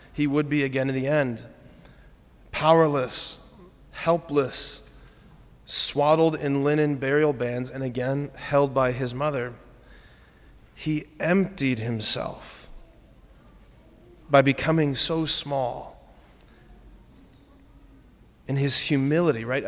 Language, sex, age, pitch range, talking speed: English, male, 30-49, 140-200 Hz, 95 wpm